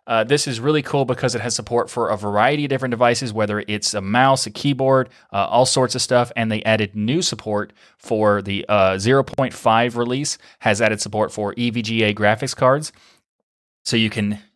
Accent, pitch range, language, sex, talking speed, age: American, 110-125 Hz, English, male, 190 wpm, 30-49